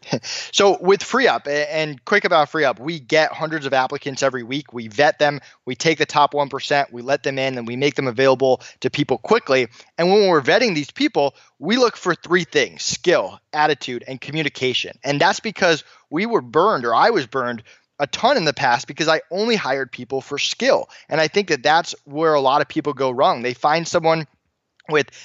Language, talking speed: English, 205 wpm